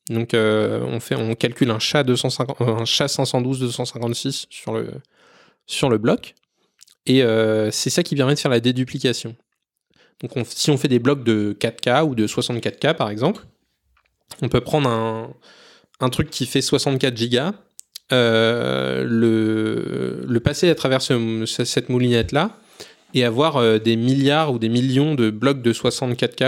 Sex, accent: male, French